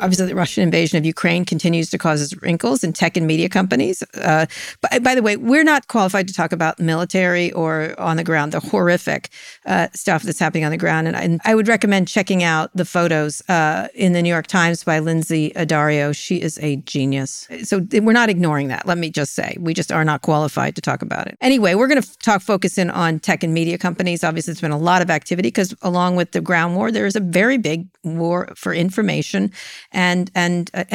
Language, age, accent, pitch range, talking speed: English, 50-69, American, 155-190 Hz, 225 wpm